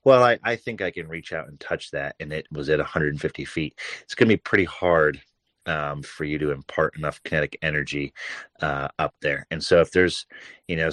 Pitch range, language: 75-90 Hz, English